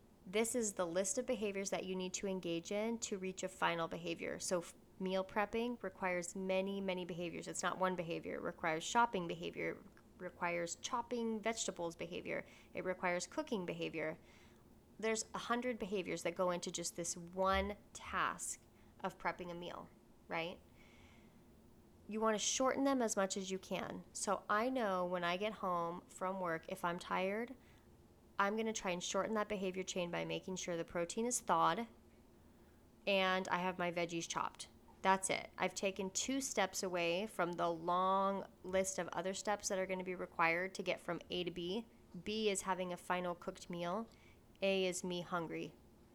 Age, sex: 20-39, female